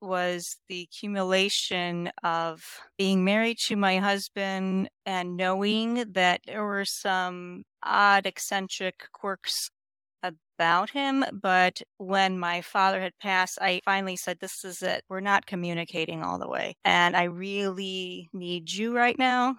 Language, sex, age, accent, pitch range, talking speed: English, female, 30-49, American, 175-205 Hz, 140 wpm